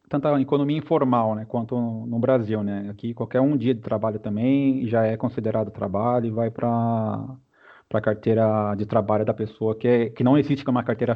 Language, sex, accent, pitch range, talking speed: Portuguese, male, Brazilian, 115-145 Hz, 195 wpm